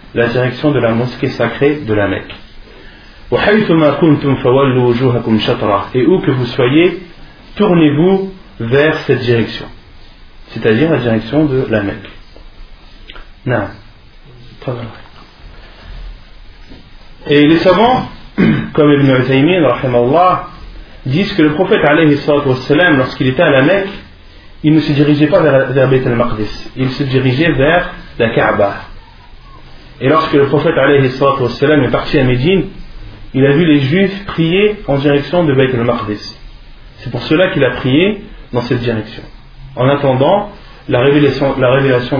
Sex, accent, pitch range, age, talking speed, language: male, French, 115-150 Hz, 40-59, 125 wpm, French